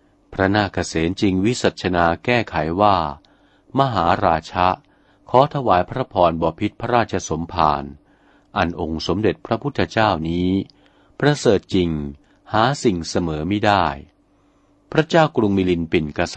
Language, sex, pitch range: Thai, male, 85-110 Hz